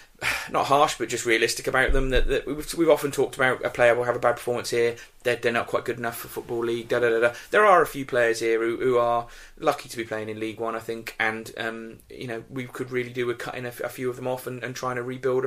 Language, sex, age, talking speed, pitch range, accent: English, male, 30-49, 285 wpm, 120-150 Hz, British